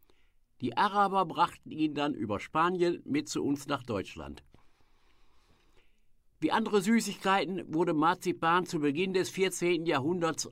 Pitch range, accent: 120-185 Hz, German